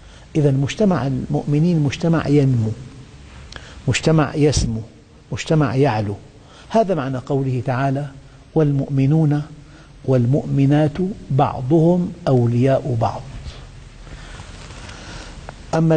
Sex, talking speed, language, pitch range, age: male, 70 wpm, Arabic, 120-160 Hz, 60-79